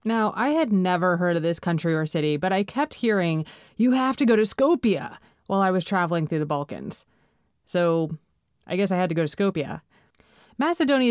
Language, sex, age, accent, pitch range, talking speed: English, female, 30-49, American, 170-220 Hz, 200 wpm